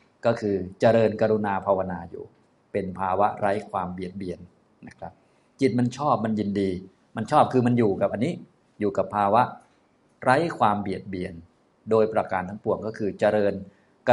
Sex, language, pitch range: male, Thai, 95-115 Hz